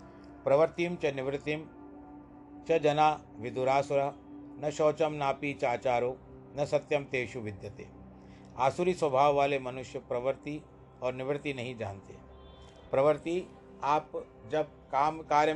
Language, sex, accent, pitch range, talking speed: Hindi, male, native, 120-150 Hz, 115 wpm